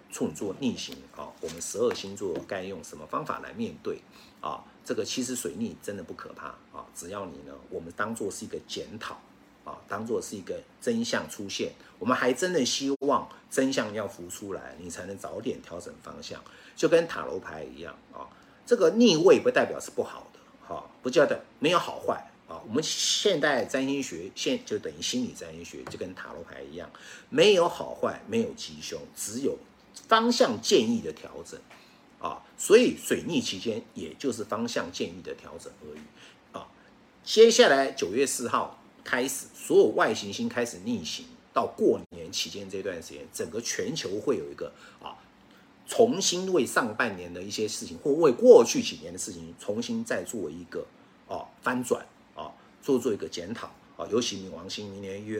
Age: 50-69